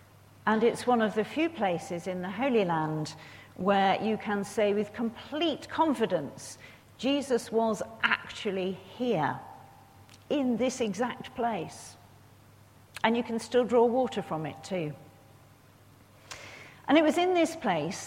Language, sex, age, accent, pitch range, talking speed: English, female, 50-69, British, 160-235 Hz, 135 wpm